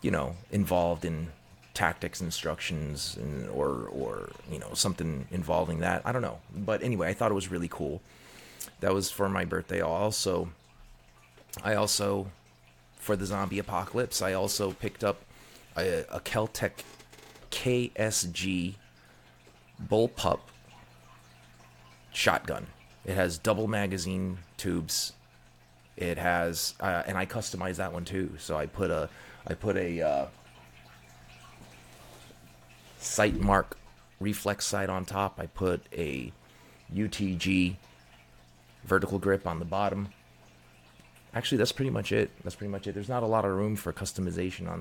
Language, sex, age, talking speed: English, male, 30-49, 135 wpm